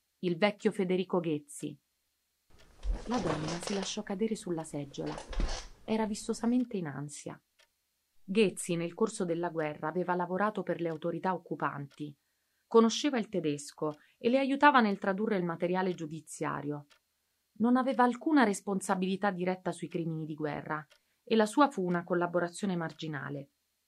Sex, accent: female, native